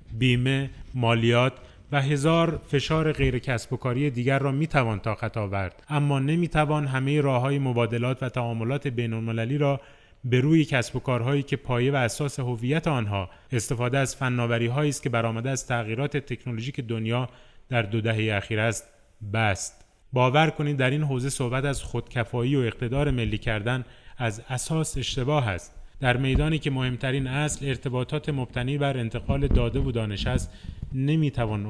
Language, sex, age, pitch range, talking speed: Persian, male, 30-49, 115-140 Hz, 160 wpm